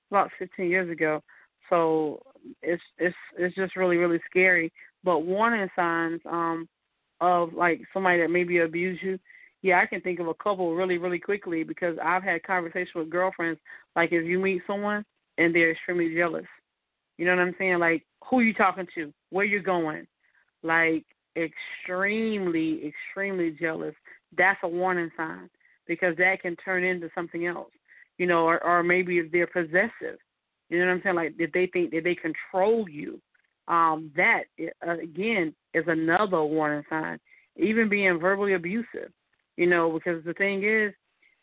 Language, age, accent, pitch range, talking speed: English, 30-49, American, 170-195 Hz, 170 wpm